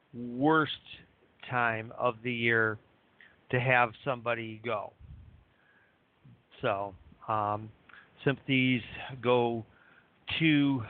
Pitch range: 120-160 Hz